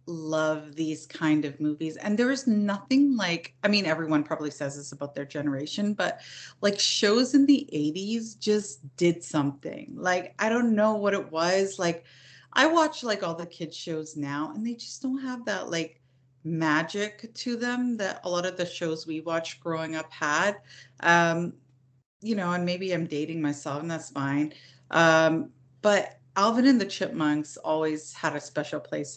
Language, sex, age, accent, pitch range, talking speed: English, female, 30-49, American, 150-195 Hz, 180 wpm